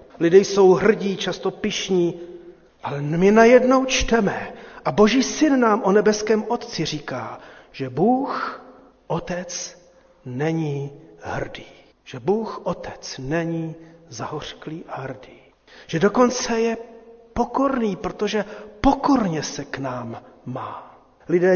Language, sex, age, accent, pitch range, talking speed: Czech, male, 40-59, native, 180-235 Hz, 110 wpm